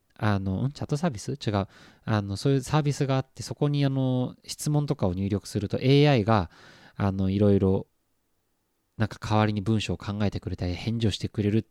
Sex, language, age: male, Japanese, 20-39